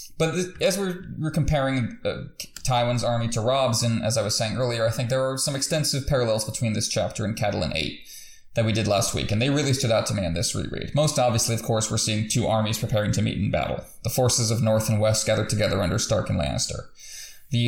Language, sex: English, male